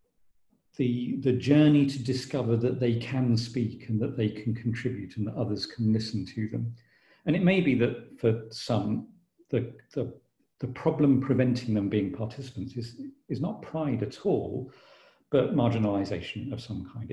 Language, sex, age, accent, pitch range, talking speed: English, male, 50-69, British, 110-140 Hz, 160 wpm